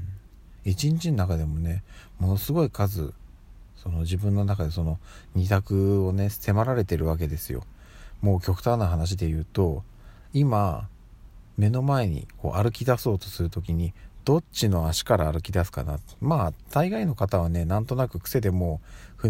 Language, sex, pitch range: Japanese, male, 90-110 Hz